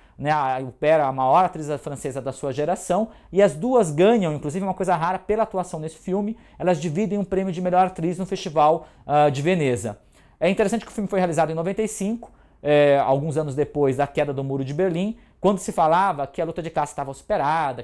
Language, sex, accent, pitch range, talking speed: Portuguese, male, Brazilian, 145-190 Hz, 200 wpm